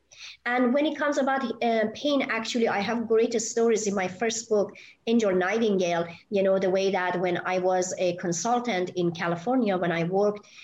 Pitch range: 180-225 Hz